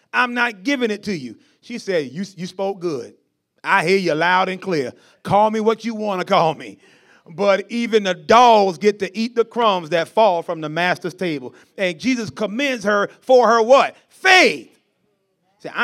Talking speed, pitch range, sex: 190 wpm, 205-295 Hz, male